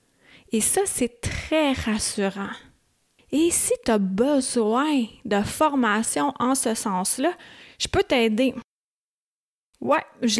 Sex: female